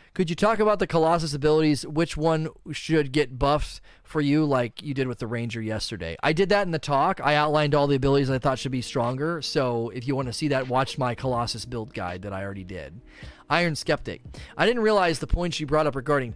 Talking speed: 235 wpm